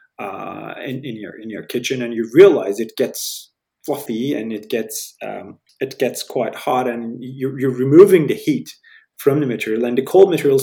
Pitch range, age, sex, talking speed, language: 130-190 Hz, 30-49, male, 190 wpm, English